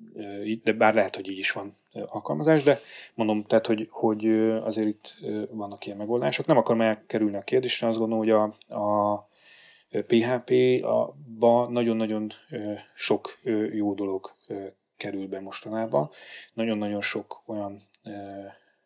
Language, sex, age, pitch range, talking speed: Hungarian, male, 30-49, 100-115 Hz, 125 wpm